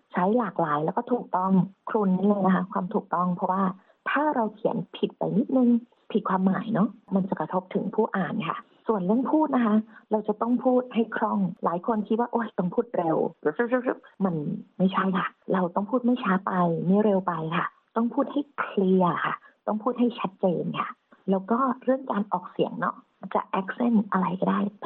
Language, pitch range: Thai, 185-235 Hz